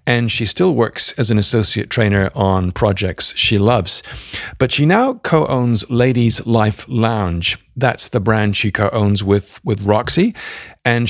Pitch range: 100-120 Hz